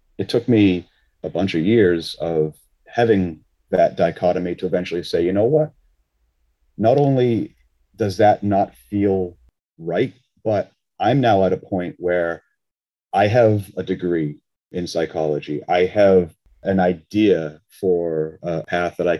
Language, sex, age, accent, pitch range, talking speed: English, male, 40-59, American, 85-105 Hz, 145 wpm